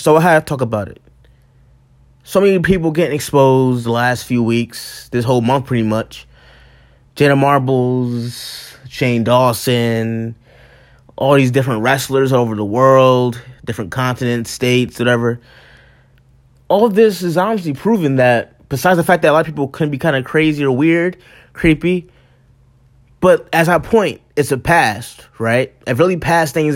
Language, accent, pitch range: English, American, 125-155 Hz